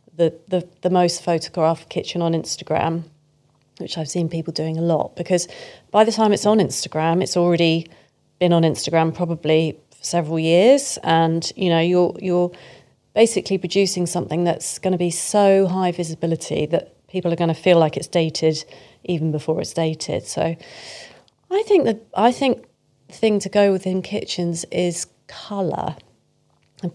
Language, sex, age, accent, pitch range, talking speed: English, female, 30-49, British, 160-185 Hz, 165 wpm